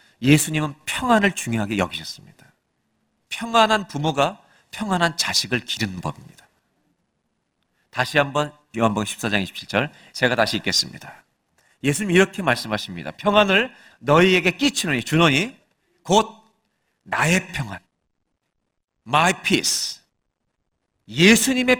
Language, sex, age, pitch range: Korean, male, 40-59, 155-230 Hz